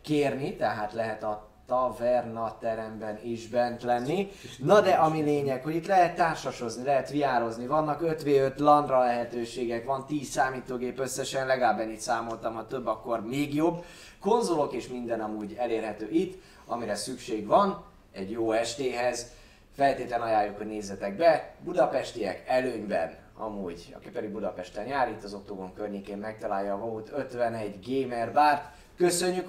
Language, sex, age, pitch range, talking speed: Hungarian, male, 20-39, 115-155 Hz, 145 wpm